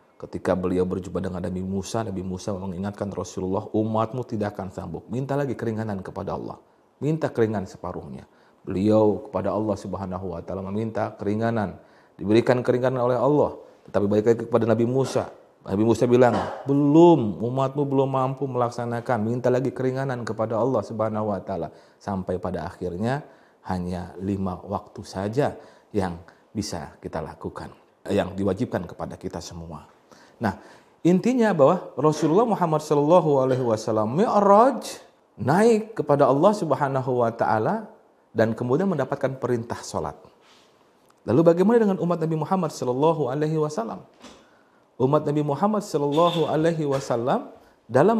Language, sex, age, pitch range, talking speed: Indonesian, male, 30-49, 95-140 Hz, 130 wpm